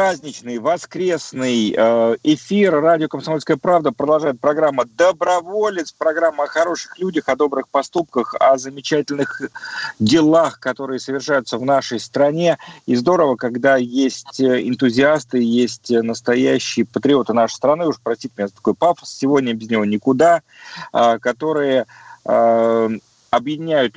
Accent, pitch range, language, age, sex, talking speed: native, 120-150 Hz, Russian, 40-59, male, 115 wpm